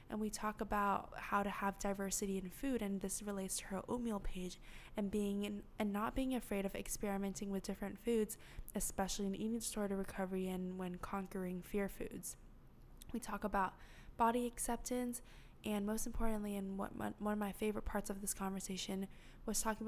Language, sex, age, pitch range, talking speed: English, female, 10-29, 195-220 Hz, 180 wpm